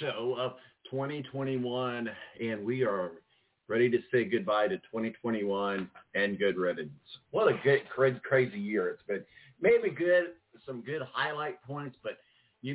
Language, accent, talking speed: English, American, 145 wpm